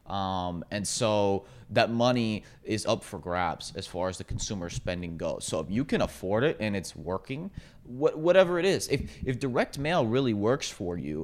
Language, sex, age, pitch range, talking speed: English, male, 30-49, 100-135 Hz, 190 wpm